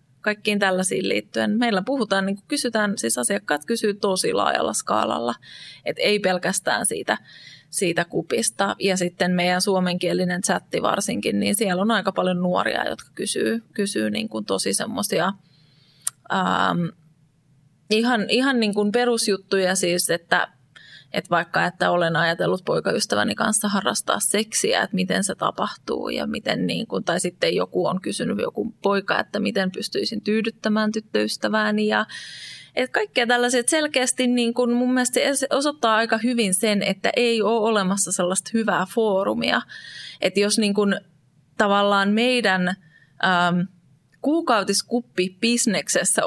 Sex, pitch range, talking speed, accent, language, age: female, 175-220 Hz, 130 wpm, native, Finnish, 20-39